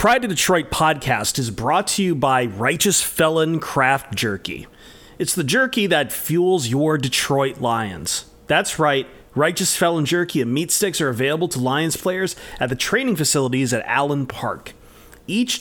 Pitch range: 130-175 Hz